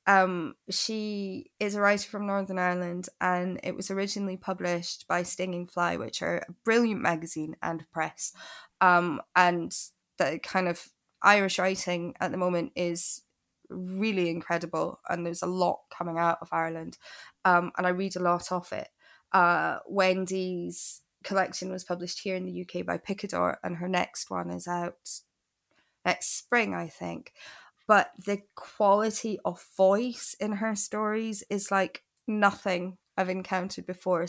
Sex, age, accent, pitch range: female, 20-39, British, 175-200 Hz